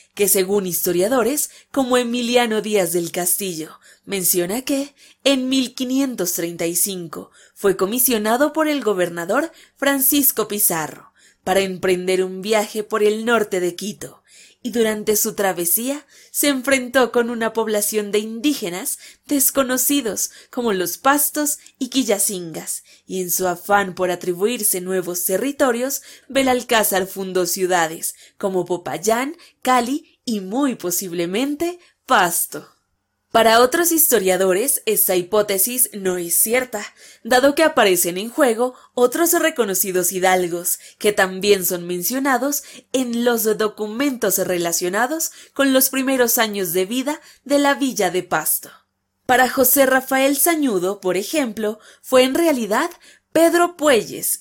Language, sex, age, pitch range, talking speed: Spanish, female, 20-39, 190-270 Hz, 120 wpm